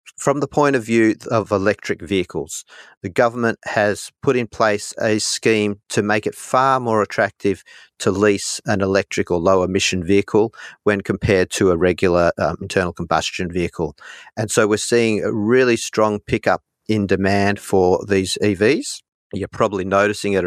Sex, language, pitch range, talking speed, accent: male, English, 95-115 Hz, 160 wpm, Australian